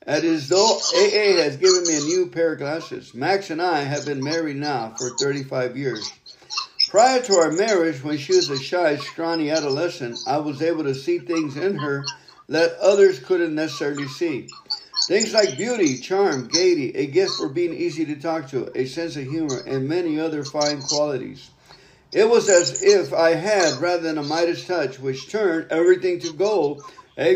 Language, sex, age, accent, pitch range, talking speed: English, male, 50-69, American, 150-230 Hz, 185 wpm